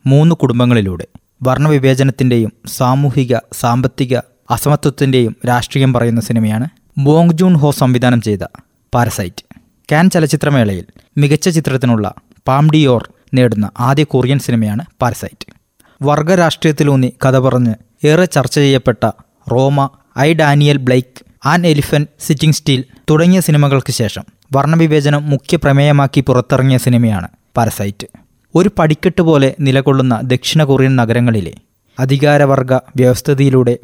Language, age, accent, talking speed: Malayalam, 20-39, native, 100 wpm